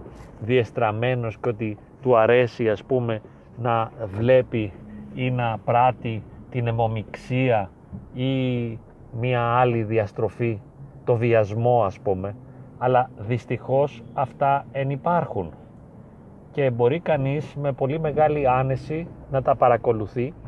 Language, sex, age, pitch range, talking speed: Greek, male, 30-49, 115-150 Hz, 105 wpm